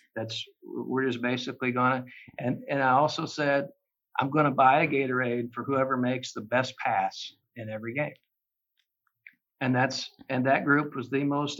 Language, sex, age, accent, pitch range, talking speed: English, male, 60-79, American, 120-135 Hz, 175 wpm